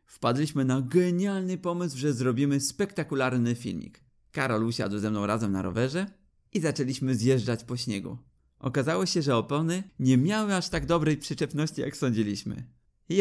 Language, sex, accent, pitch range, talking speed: Polish, male, native, 110-140 Hz, 150 wpm